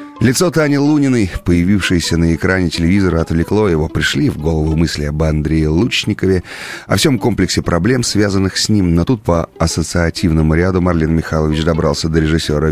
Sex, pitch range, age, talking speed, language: male, 80-100 Hz, 30-49, 155 wpm, Russian